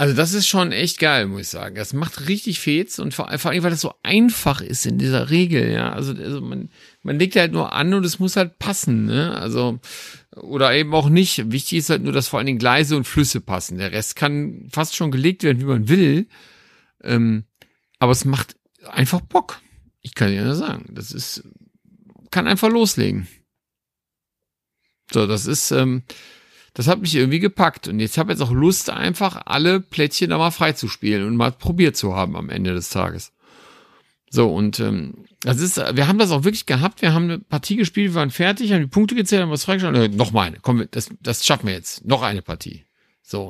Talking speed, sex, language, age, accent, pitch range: 210 wpm, male, German, 50-69, German, 125-180 Hz